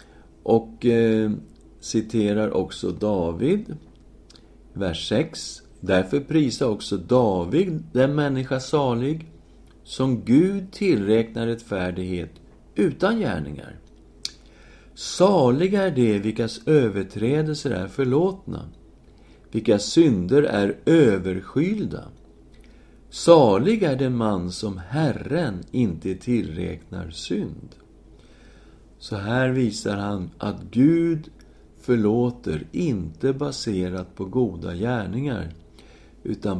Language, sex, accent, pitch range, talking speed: English, male, Swedish, 90-130 Hz, 85 wpm